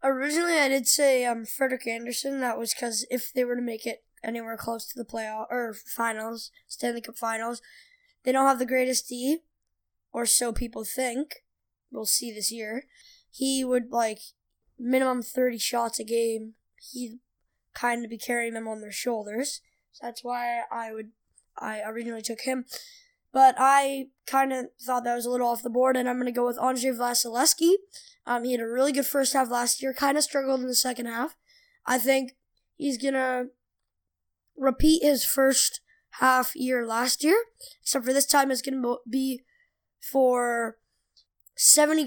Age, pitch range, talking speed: 10-29, 235-270 Hz, 175 wpm